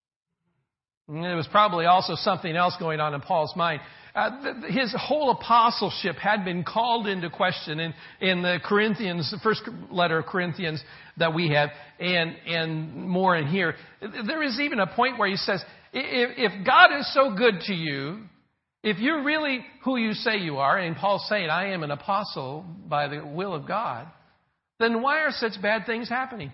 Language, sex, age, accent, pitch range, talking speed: English, male, 50-69, American, 160-230 Hz, 180 wpm